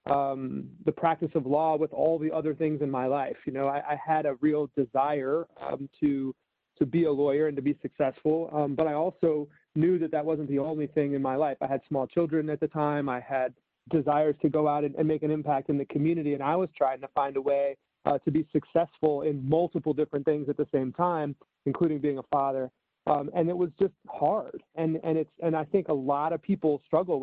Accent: American